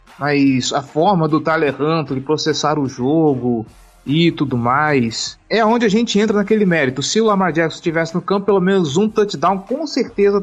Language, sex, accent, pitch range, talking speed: Portuguese, male, Brazilian, 140-195 Hz, 185 wpm